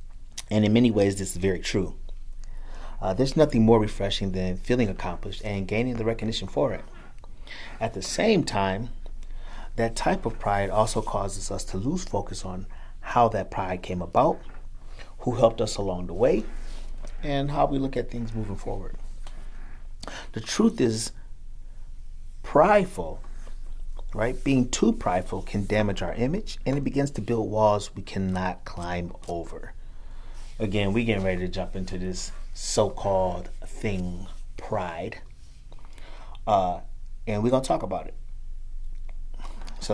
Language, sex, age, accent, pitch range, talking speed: English, male, 40-59, American, 90-115 Hz, 145 wpm